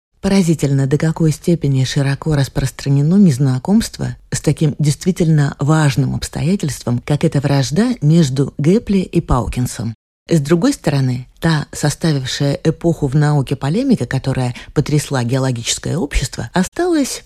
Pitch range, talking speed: 130-170 Hz, 115 wpm